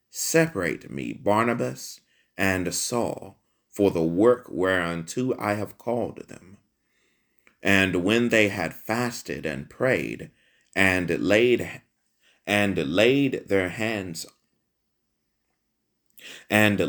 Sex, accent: male, American